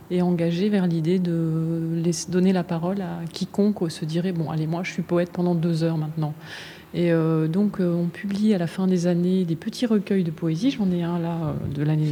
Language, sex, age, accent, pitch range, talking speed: French, female, 20-39, French, 160-190 Hz, 225 wpm